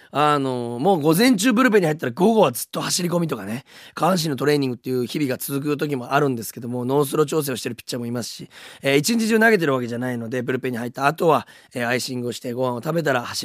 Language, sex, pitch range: Japanese, male, 125-170 Hz